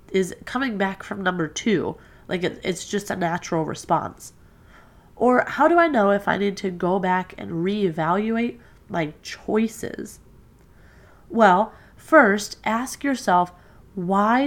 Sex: female